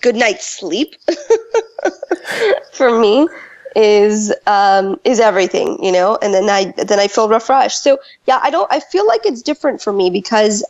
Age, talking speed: 20-39, 170 wpm